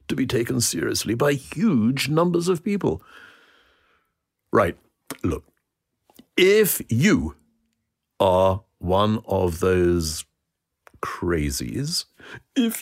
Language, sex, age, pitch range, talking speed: English, male, 60-79, 90-140 Hz, 85 wpm